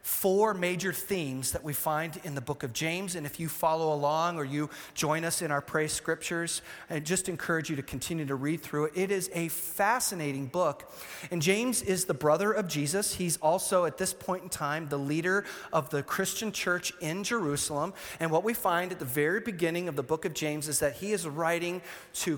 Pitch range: 150-180 Hz